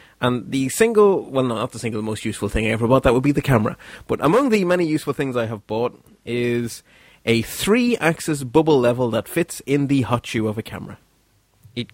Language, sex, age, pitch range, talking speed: English, male, 30-49, 110-140 Hz, 210 wpm